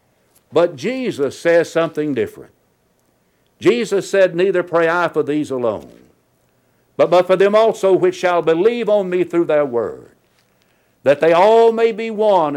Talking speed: 150 wpm